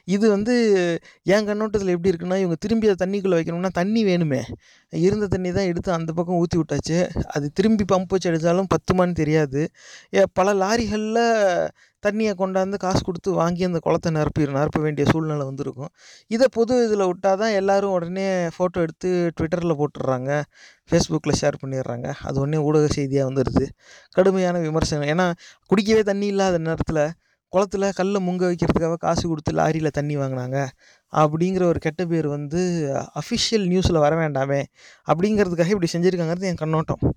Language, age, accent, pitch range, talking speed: Tamil, 30-49, native, 150-195 Hz, 145 wpm